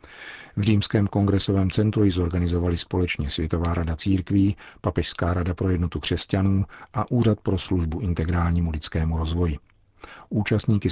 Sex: male